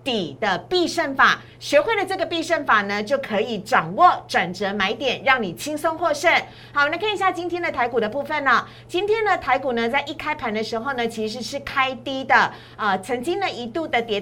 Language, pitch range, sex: Chinese, 240-335 Hz, female